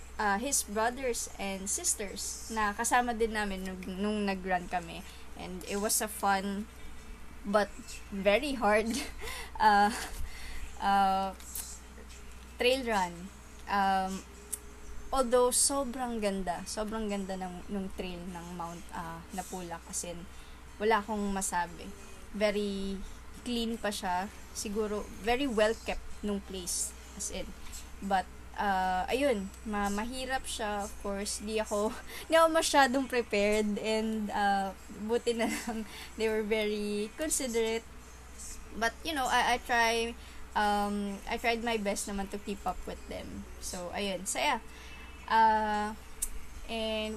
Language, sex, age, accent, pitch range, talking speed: English, female, 20-39, Filipino, 185-225 Hz, 125 wpm